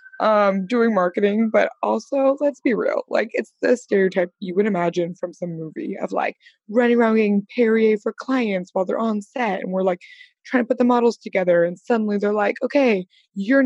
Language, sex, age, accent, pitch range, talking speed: English, female, 20-39, American, 185-240 Hz, 200 wpm